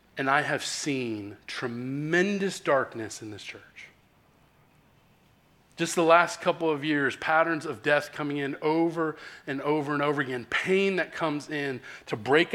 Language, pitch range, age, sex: English, 145-190 Hz, 40-59, male